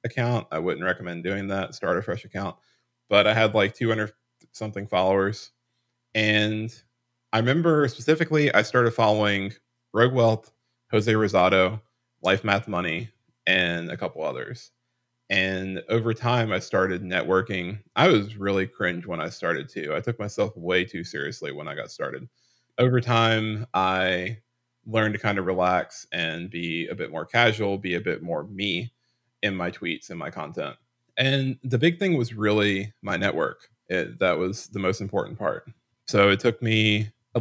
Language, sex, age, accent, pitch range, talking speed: English, male, 20-39, American, 95-120 Hz, 165 wpm